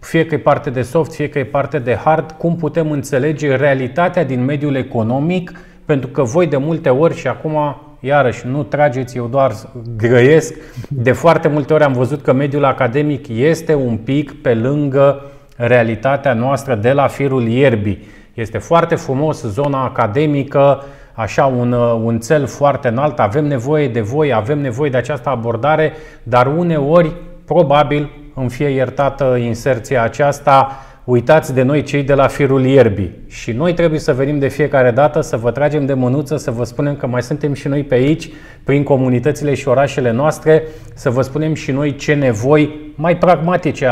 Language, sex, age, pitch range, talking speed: Romanian, male, 30-49, 125-150 Hz, 170 wpm